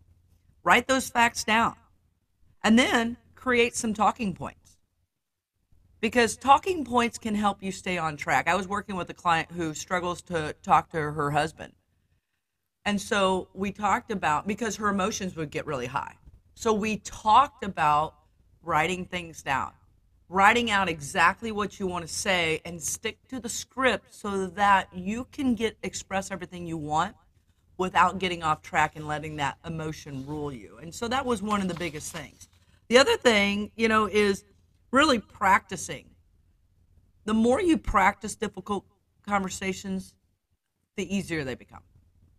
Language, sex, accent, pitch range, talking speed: English, female, American, 140-205 Hz, 155 wpm